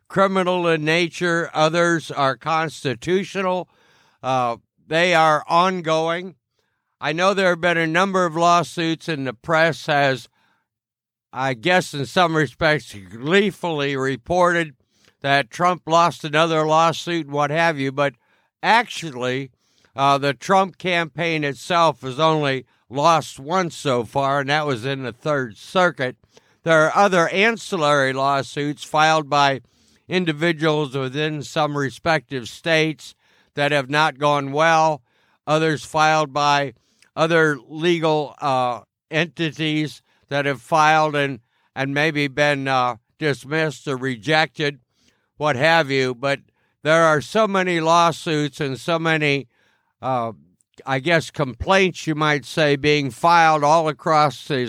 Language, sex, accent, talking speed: English, male, American, 130 wpm